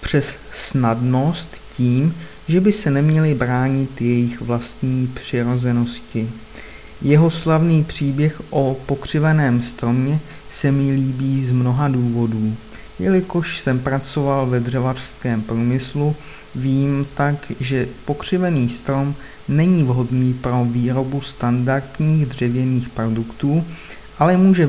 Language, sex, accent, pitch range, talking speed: Czech, male, native, 120-150 Hz, 105 wpm